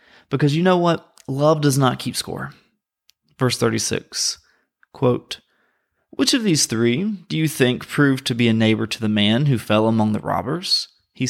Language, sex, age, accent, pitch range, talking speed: English, male, 30-49, American, 135-180 Hz, 175 wpm